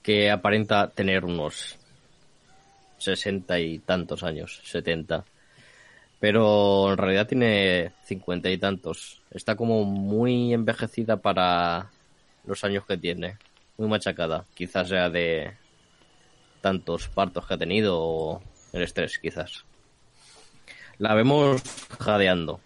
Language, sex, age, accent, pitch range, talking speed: Spanish, male, 20-39, Spanish, 90-105 Hz, 110 wpm